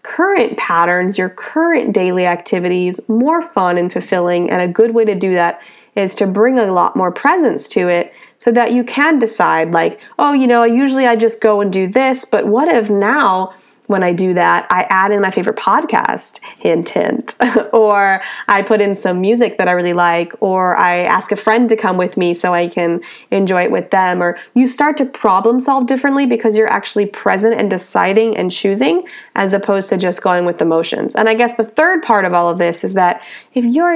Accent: American